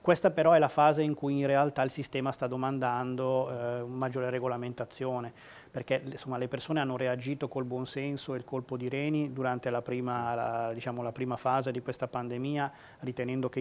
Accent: native